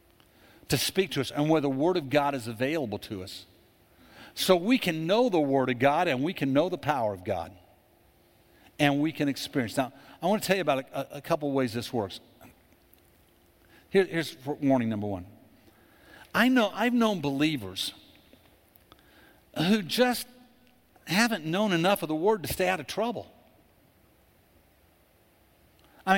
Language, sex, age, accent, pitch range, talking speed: English, male, 50-69, American, 145-220 Hz, 165 wpm